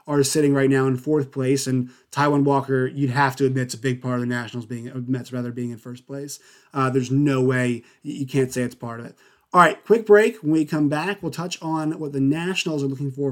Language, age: English, 30-49